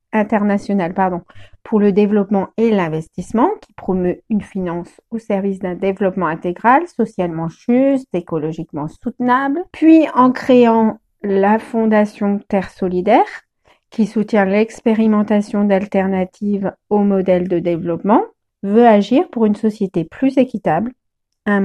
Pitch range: 195-245 Hz